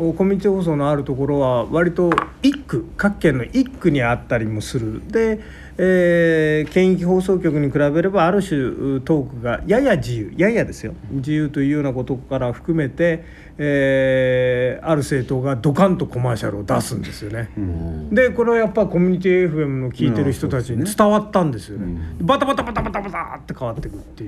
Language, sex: Japanese, male